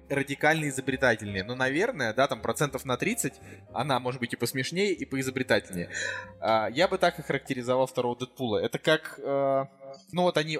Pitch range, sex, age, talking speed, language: 130-160 Hz, male, 20-39, 170 wpm, Russian